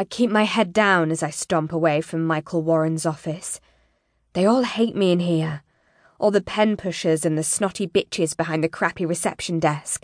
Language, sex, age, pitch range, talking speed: English, female, 20-39, 165-225 Hz, 185 wpm